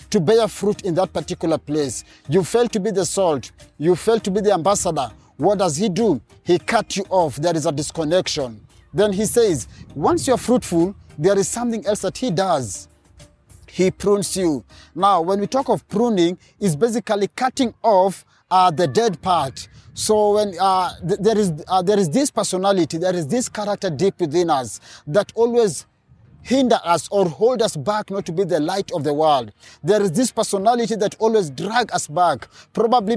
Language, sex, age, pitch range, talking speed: English, male, 30-49, 170-220 Hz, 190 wpm